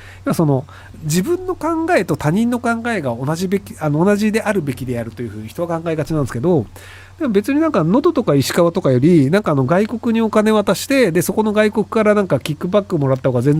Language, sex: Japanese, male